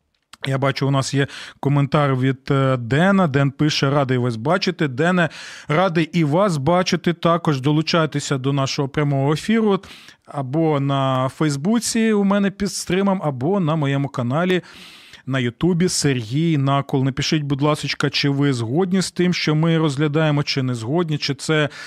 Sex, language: male, Ukrainian